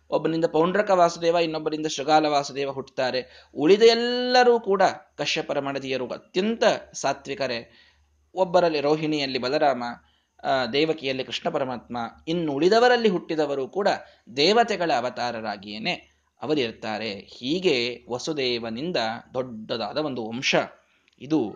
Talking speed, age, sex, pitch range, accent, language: 90 wpm, 20-39, male, 120-170 Hz, native, Kannada